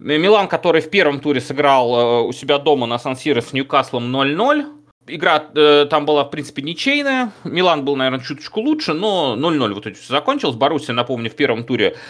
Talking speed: 185 wpm